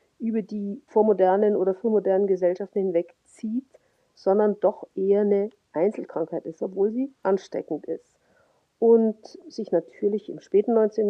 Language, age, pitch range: German, 50-69, 190-255 Hz